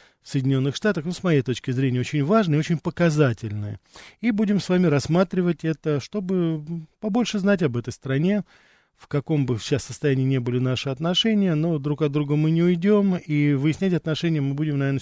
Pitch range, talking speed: 125-160 Hz, 180 wpm